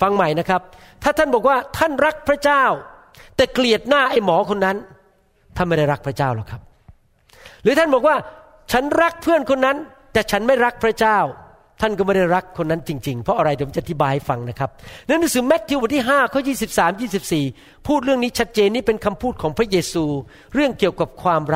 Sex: male